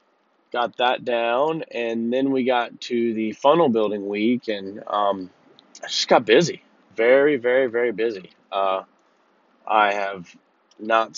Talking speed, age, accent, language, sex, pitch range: 140 wpm, 20-39, American, English, male, 100-125 Hz